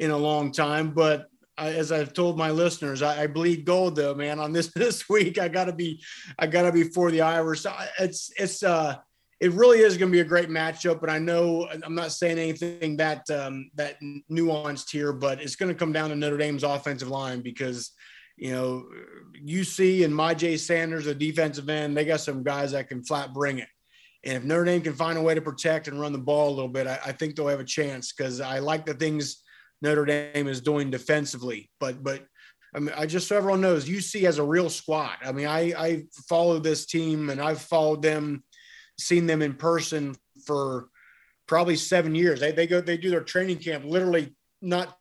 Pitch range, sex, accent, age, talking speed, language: 145-170 Hz, male, American, 30-49, 215 wpm, English